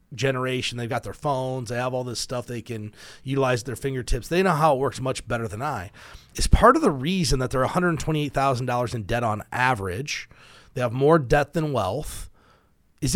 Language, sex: English, male